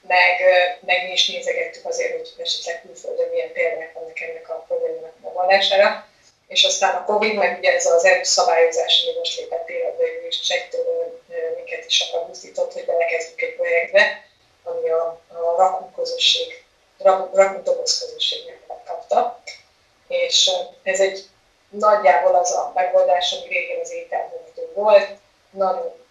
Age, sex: 20-39, female